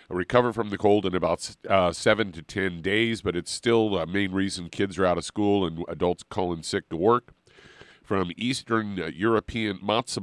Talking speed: 190 wpm